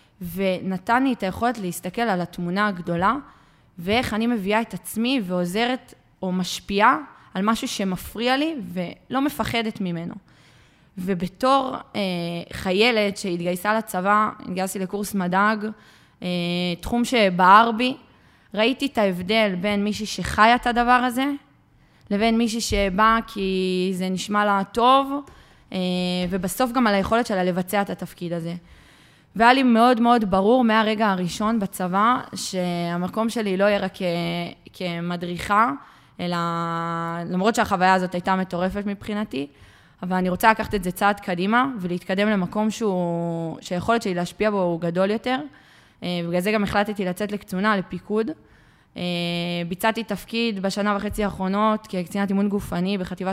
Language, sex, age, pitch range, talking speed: Hebrew, female, 20-39, 180-220 Hz, 130 wpm